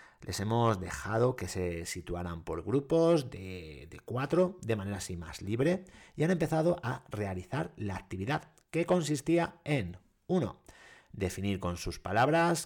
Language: Spanish